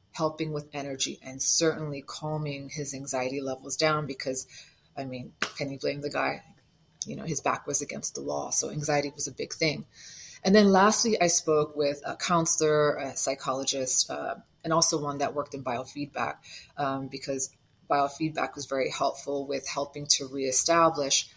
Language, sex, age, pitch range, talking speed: English, female, 30-49, 140-155 Hz, 170 wpm